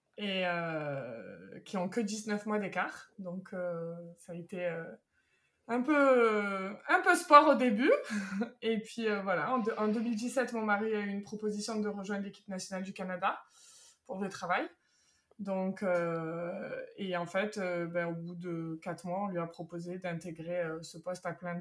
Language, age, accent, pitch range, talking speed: French, 20-39, French, 180-230 Hz, 185 wpm